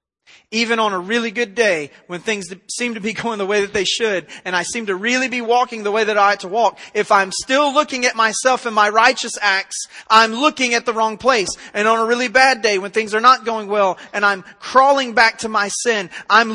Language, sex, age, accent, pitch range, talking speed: English, male, 30-49, American, 195-250 Hz, 245 wpm